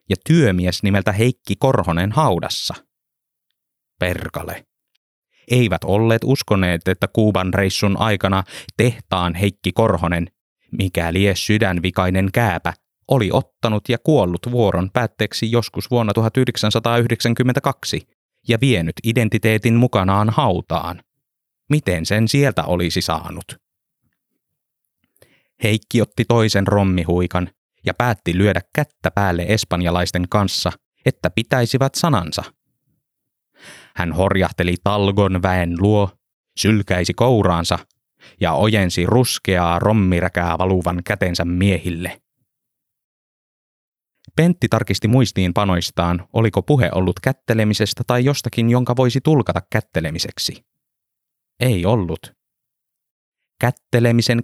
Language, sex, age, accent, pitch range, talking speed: Finnish, male, 30-49, native, 90-120 Hz, 95 wpm